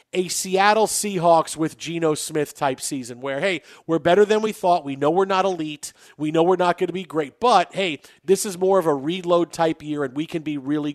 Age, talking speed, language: 40-59, 235 wpm, English